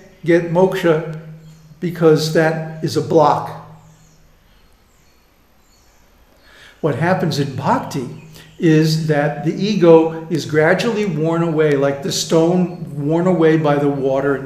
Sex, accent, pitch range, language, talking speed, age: male, American, 145-175 Hz, English, 115 wpm, 60-79